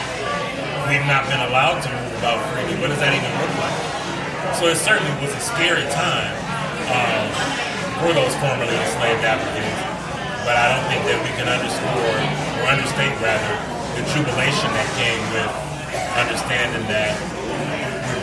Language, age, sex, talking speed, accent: English, 30-49, male, 150 wpm, American